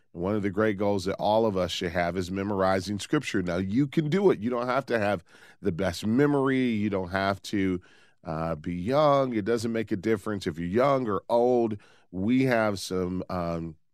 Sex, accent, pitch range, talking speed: male, American, 90-115 Hz, 205 wpm